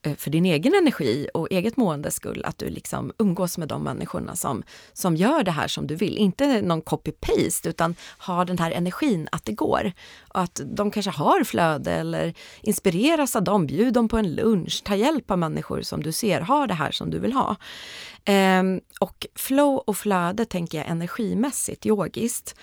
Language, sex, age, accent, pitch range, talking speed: Swedish, female, 30-49, native, 150-205 Hz, 190 wpm